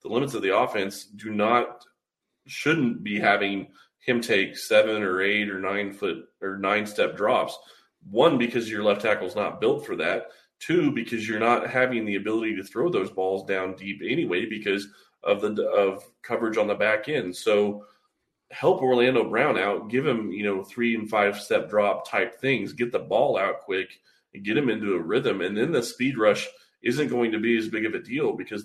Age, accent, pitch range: 30-49, American, 100-125 Hz